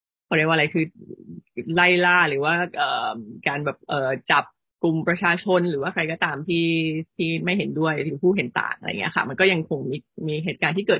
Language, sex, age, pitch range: Thai, female, 20-39, 155-185 Hz